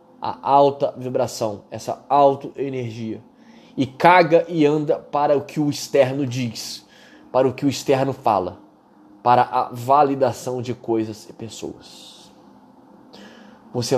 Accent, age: Brazilian, 20-39